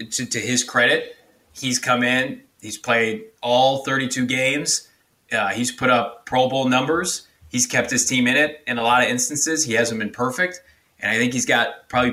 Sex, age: male, 20-39